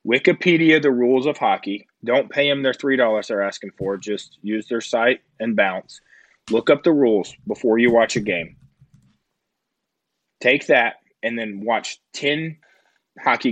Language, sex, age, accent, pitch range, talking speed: English, male, 20-39, American, 105-145 Hz, 155 wpm